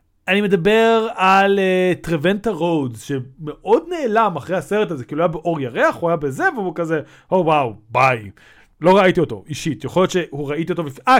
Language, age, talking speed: Hebrew, 30-49, 175 wpm